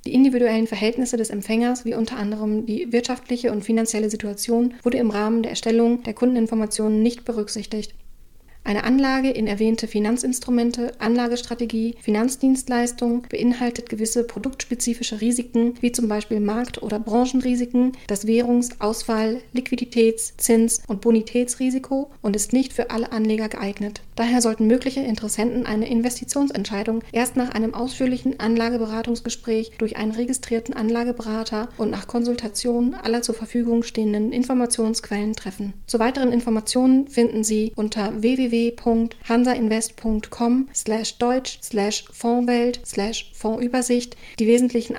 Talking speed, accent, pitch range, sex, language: 125 wpm, German, 220-245 Hz, female, German